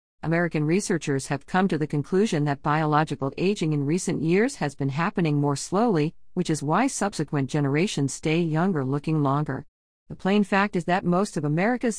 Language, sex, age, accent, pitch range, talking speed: English, female, 40-59, American, 145-185 Hz, 175 wpm